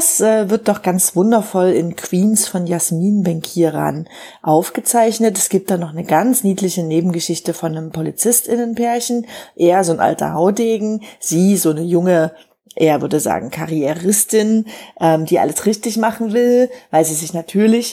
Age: 40-59